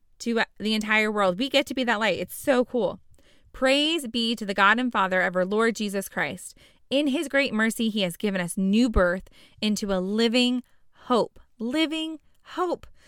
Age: 20-39